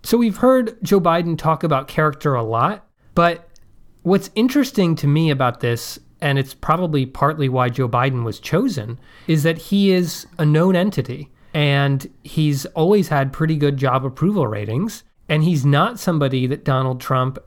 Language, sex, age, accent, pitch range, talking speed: English, male, 30-49, American, 135-175 Hz, 170 wpm